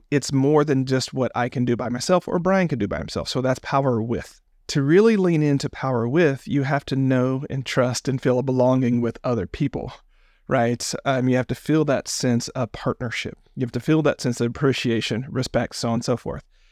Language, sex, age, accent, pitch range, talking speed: English, male, 40-59, American, 125-155 Hz, 225 wpm